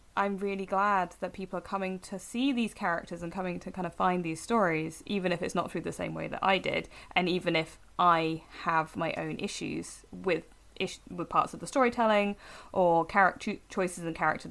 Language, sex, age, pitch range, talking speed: English, female, 20-39, 160-205 Hz, 205 wpm